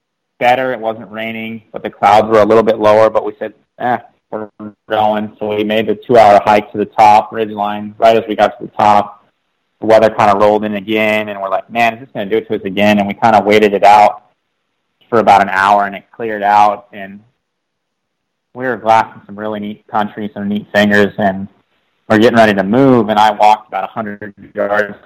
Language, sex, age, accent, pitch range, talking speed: English, male, 30-49, American, 100-110 Hz, 225 wpm